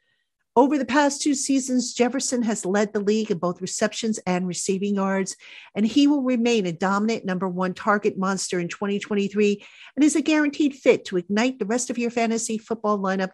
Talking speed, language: 190 wpm, English